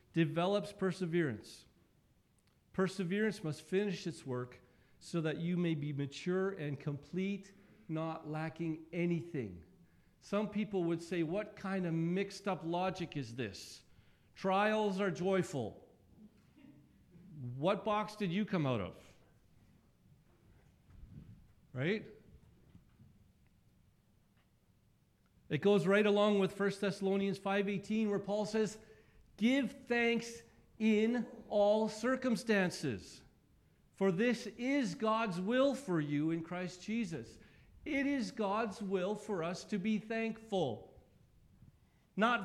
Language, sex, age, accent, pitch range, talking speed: English, male, 50-69, American, 170-220 Hz, 110 wpm